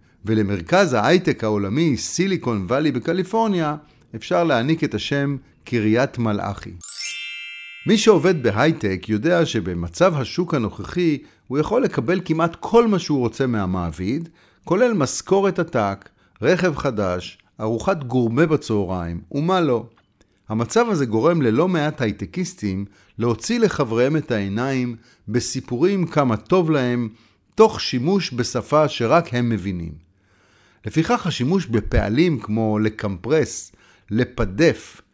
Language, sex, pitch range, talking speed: Hebrew, male, 105-165 Hz, 110 wpm